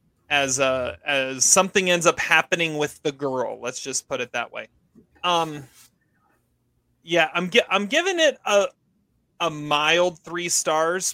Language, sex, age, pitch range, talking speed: English, male, 30-49, 135-170 Hz, 150 wpm